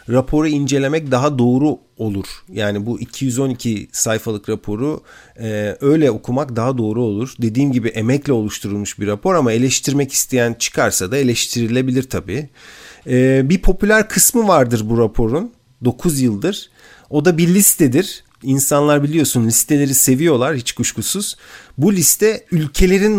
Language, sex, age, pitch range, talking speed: Turkish, male, 40-59, 120-155 Hz, 130 wpm